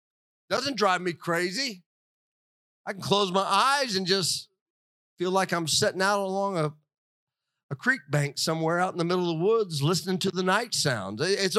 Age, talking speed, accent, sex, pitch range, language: 50-69, 180 wpm, American, male, 140-185 Hz, English